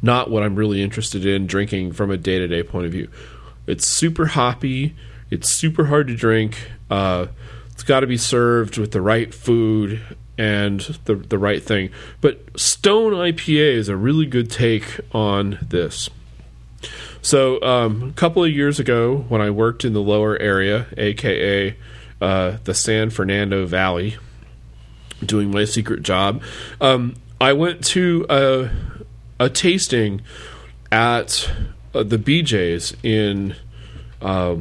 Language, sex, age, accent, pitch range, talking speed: English, male, 40-59, American, 100-130 Hz, 145 wpm